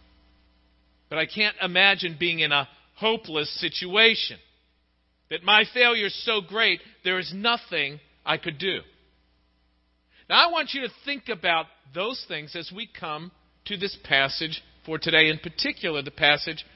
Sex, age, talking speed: male, 50-69, 150 wpm